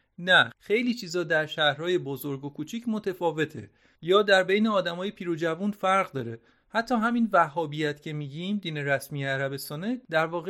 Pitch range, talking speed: 135-195 Hz, 160 wpm